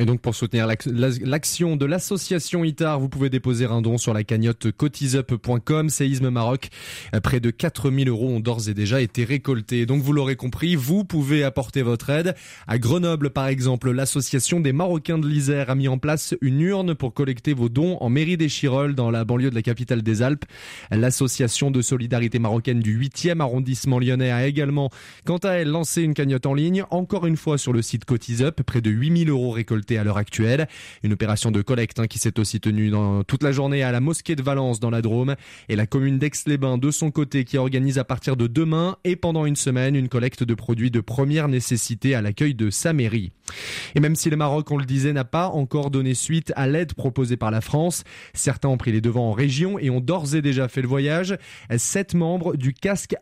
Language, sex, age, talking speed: French, male, 20-39, 215 wpm